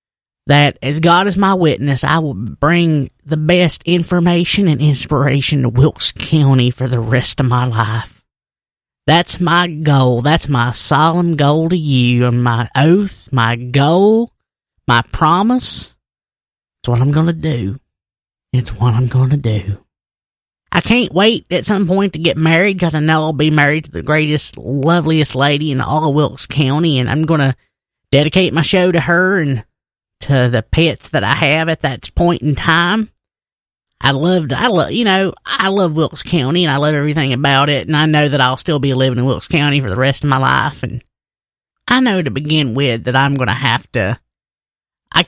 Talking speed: 190 wpm